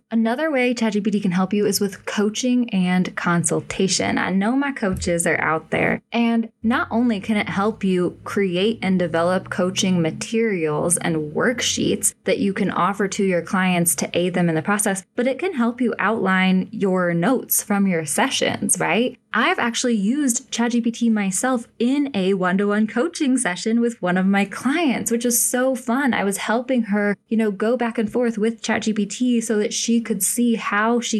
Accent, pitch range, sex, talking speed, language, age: American, 185-230 Hz, female, 185 wpm, English, 10-29